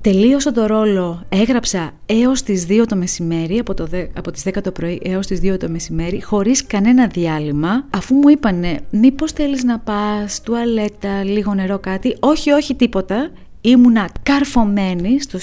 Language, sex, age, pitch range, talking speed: Greek, female, 30-49, 185-235 Hz, 160 wpm